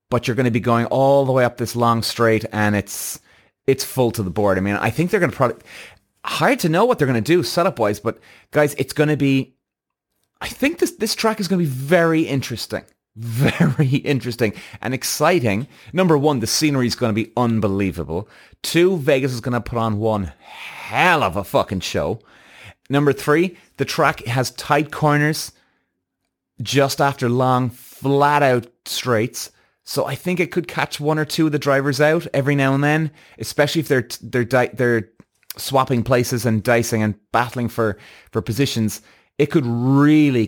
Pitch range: 110-145 Hz